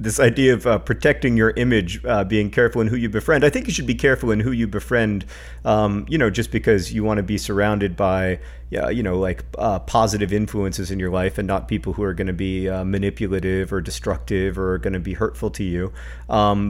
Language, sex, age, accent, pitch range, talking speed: English, male, 40-59, American, 95-110 Hz, 235 wpm